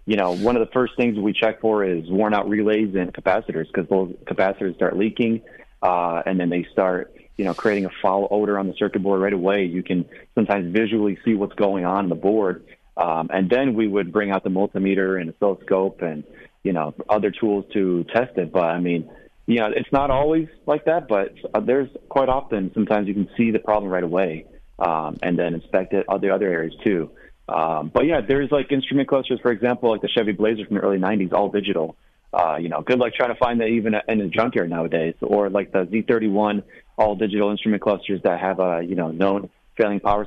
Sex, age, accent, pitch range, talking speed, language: male, 30-49, American, 95-110 Hz, 220 wpm, English